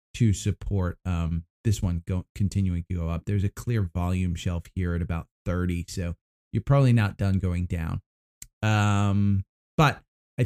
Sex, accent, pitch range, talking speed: male, American, 90-115 Hz, 160 wpm